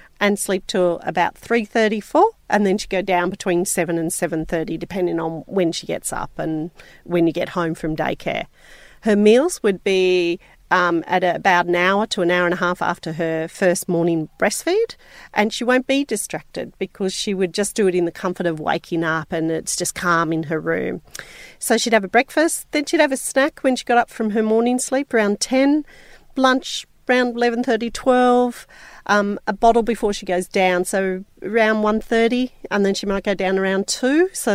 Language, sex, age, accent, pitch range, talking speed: English, female, 40-59, Australian, 175-230 Hz, 200 wpm